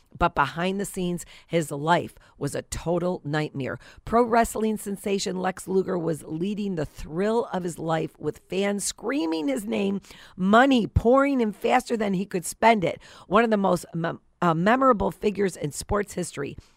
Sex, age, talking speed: female, 50-69, 165 wpm